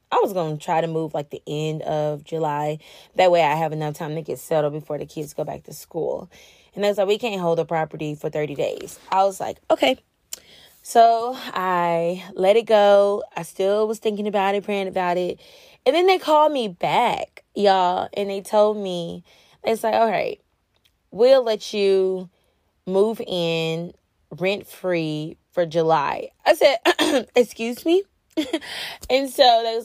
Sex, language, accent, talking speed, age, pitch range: female, English, American, 180 wpm, 20-39, 170-215 Hz